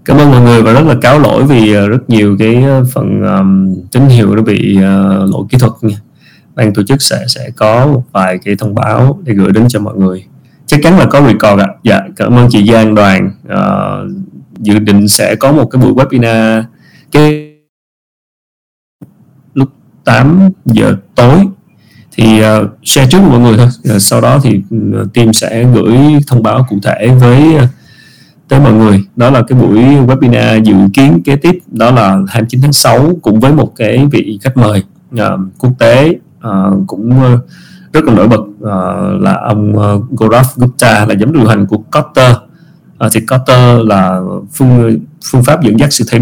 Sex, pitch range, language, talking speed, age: male, 105-135 Hz, Vietnamese, 180 wpm, 20-39